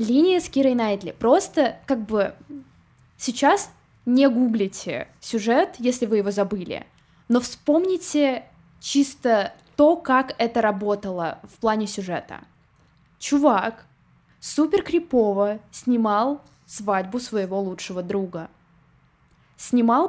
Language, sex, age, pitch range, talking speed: Russian, female, 20-39, 205-265 Hz, 100 wpm